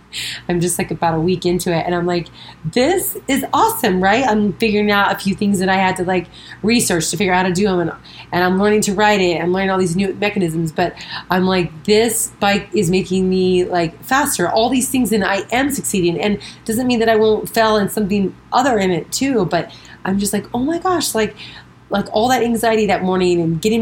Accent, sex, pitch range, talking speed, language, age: American, female, 180-225 Hz, 230 wpm, English, 30-49